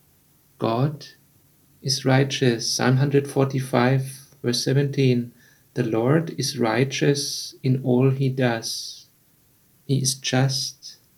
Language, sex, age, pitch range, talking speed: English, male, 50-69, 125-140 Hz, 95 wpm